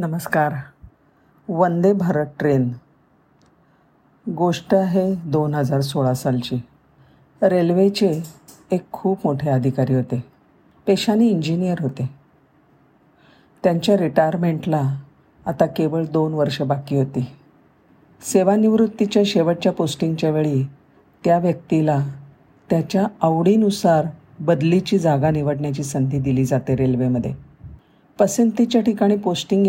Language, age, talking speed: Marathi, 50-69, 85 wpm